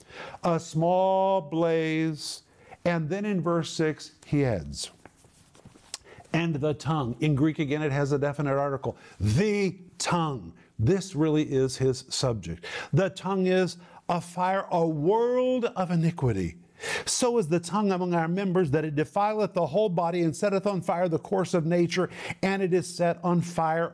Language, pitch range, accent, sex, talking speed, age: English, 155-185 Hz, American, male, 160 wpm, 50-69